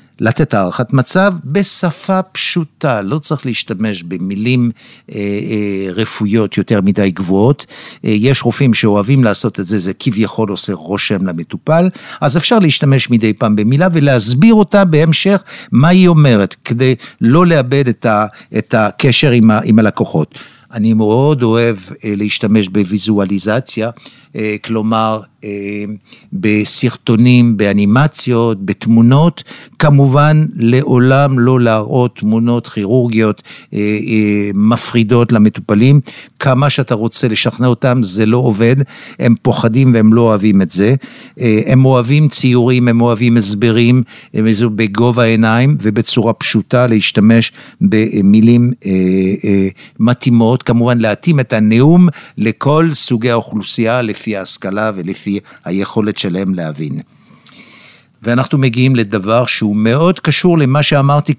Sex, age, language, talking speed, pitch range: male, 60-79, Hebrew, 115 wpm, 105-130 Hz